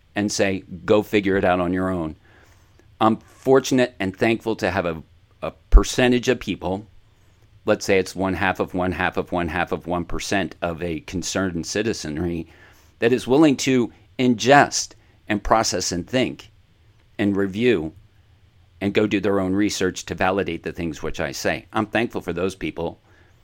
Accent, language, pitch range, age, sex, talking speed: American, English, 90-110 Hz, 50-69, male, 170 wpm